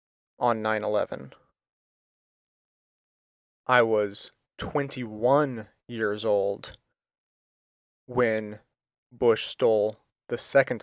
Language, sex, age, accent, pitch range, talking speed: English, male, 30-49, American, 105-135 Hz, 65 wpm